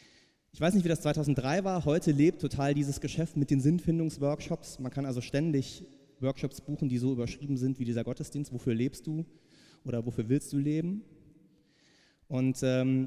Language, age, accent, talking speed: German, 30-49, German, 175 wpm